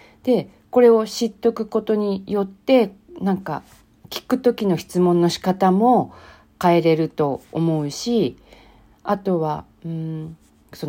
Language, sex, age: Japanese, female, 40-59